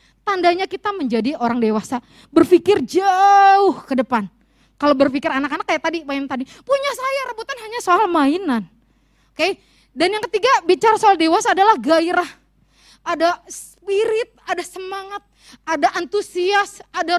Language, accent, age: Indonesian, native, 20-39